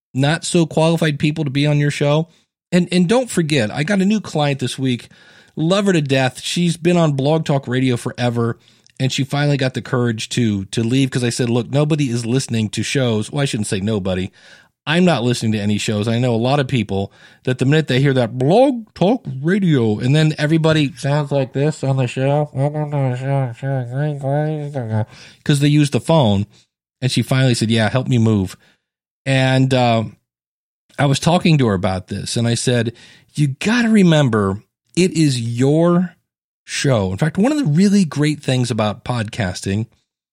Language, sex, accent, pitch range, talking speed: English, male, American, 120-160 Hz, 190 wpm